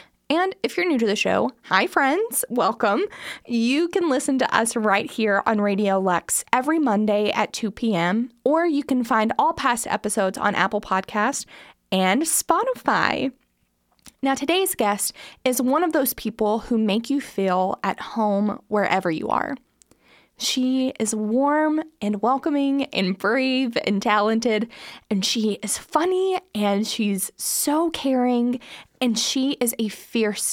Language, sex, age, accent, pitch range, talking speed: English, female, 20-39, American, 200-265 Hz, 150 wpm